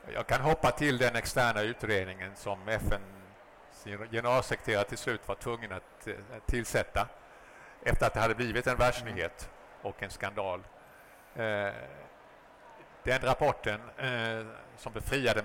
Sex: male